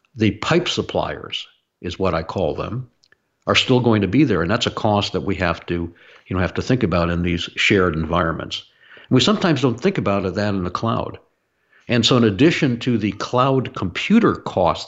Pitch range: 90-115 Hz